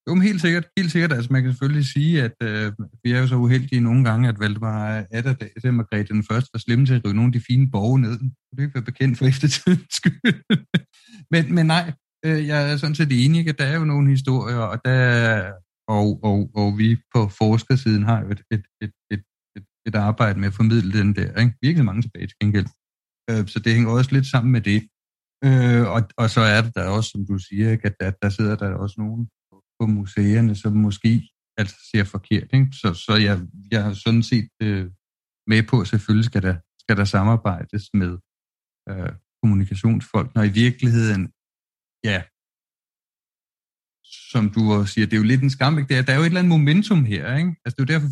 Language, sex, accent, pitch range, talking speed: Danish, male, native, 105-135 Hz, 215 wpm